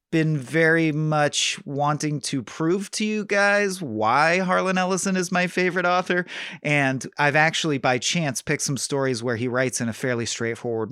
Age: 30-49